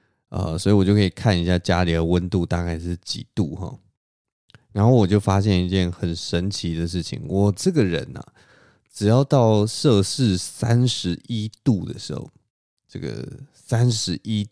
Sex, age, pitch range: male, 20-39, 90-125 Hz